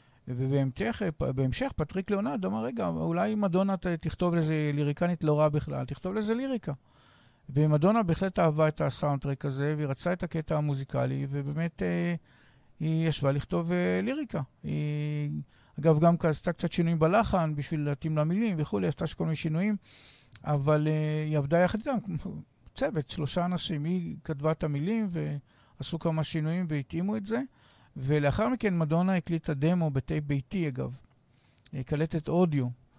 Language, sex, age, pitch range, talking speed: Hebrew, male, 50-69, 140-175 Hz, 145 wpm